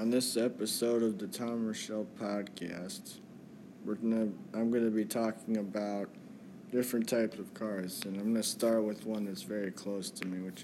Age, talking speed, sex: 20-39, 175 wpm, male